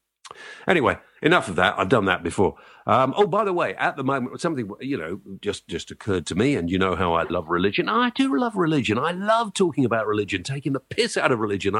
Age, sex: 50-69, male